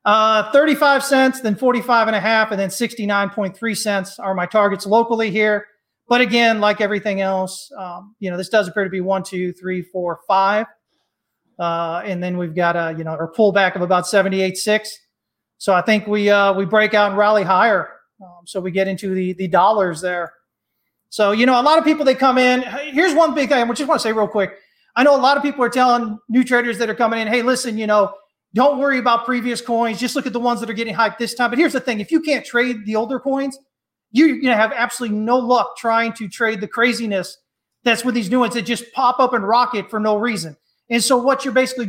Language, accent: English, American